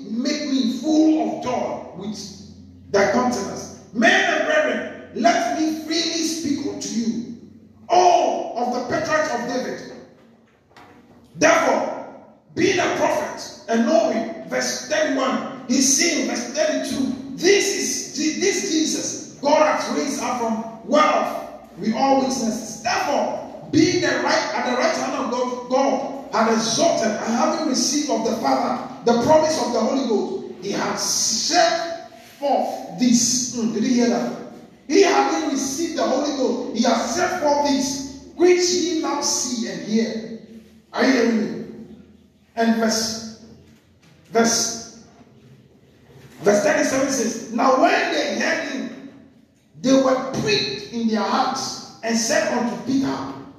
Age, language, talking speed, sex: 40-59, English, 140 wpm, male